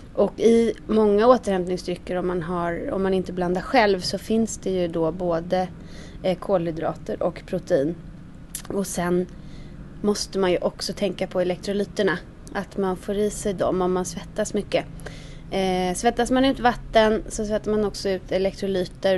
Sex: female